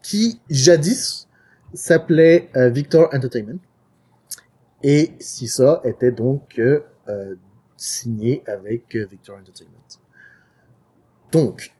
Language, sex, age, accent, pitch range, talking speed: French, male, 30-49, French, 120-180 Hz, 85 wpm